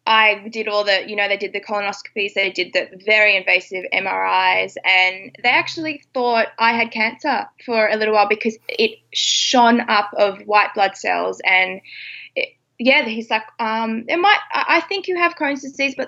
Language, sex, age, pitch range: English, female, 20-39, 200-275 Hz